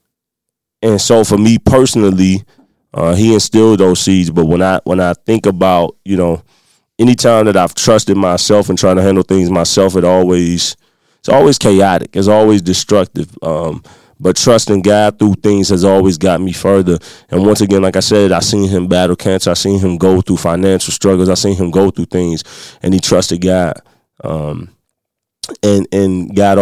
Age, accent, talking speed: 20-39, American, 185 wpm